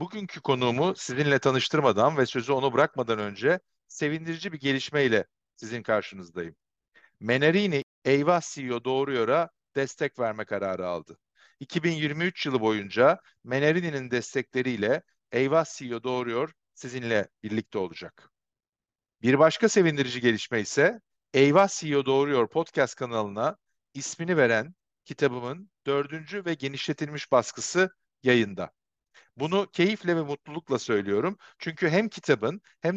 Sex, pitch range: male, 120-165 Hz